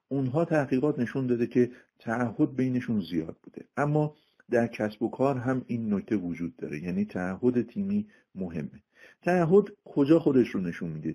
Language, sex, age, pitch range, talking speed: Persian, male, 50-69, 95-130 Hz, 155 wpm